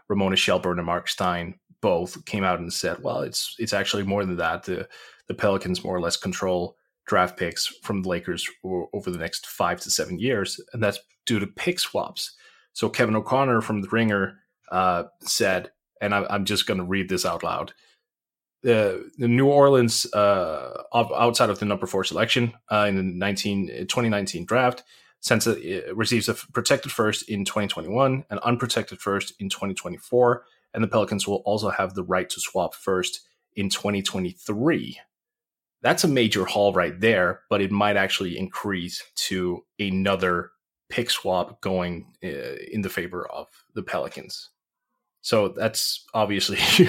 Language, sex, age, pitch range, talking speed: English, male, 30-49, 95-115 Hz, 165 wpm